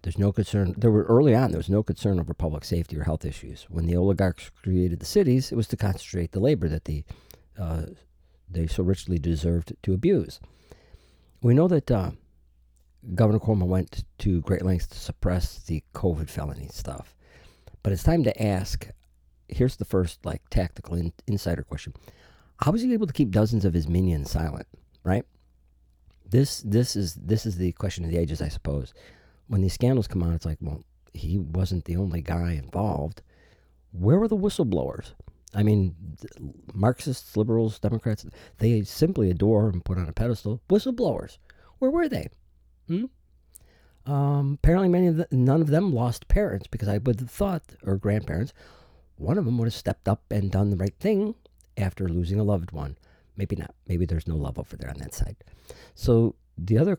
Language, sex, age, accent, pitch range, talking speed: English, male, 50-69, American, 85-115 Hz, 185 wpm